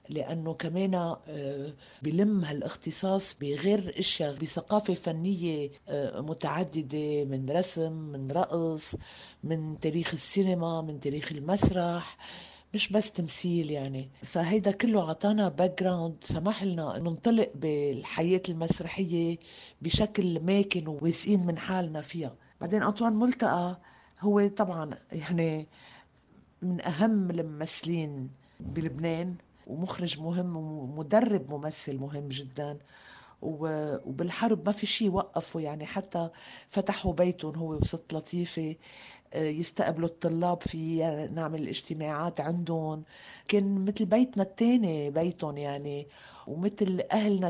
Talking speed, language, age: 100 wpm, Arabic, 50-69